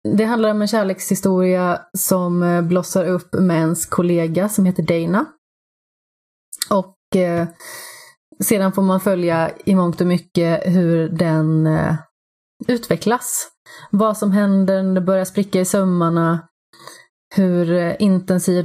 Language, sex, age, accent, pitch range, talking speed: Swedish, female, 30-49, native, 170-185 Hz, 125 wpm